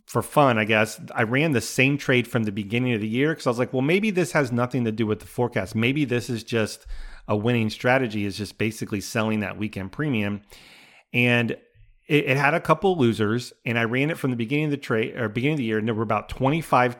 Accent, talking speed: American, 250 wpm